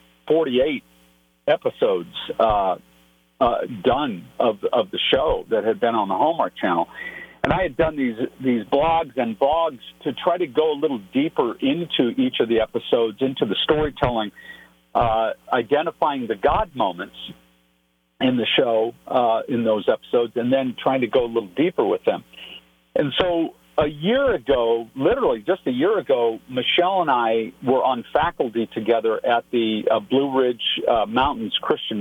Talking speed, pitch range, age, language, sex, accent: 165 wpm, 105-155 Hz, 50-69, English, male, American